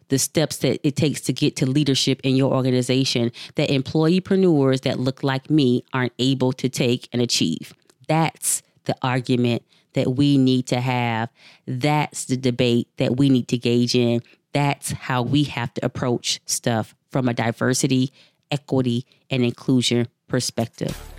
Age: 30-49